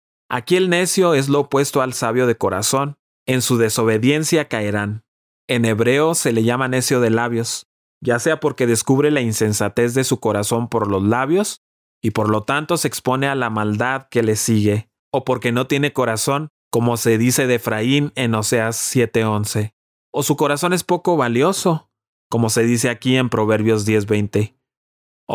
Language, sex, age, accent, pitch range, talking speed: Spanish, male, 30-49, Mexican, 110-130 Hz, 170 wpm